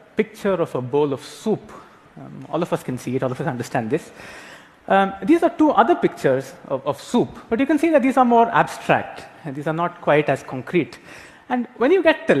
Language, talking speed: English, 230 wpm